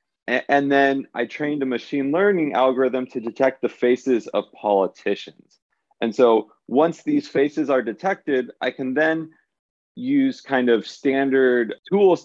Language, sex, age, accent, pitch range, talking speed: English, male, 30-49, American, 105-135 Hz, 140 wpm